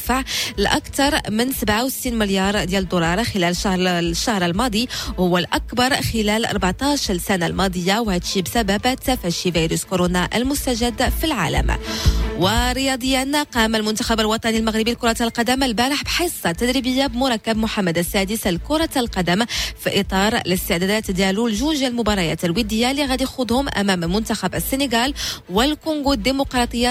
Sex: female